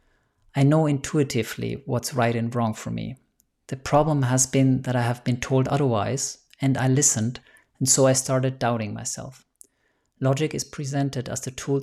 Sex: male